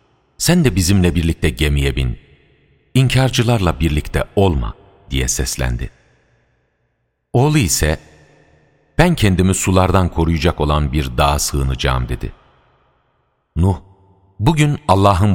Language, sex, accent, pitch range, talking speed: Turkish, male, native, 65-90 Hz, 100 wpm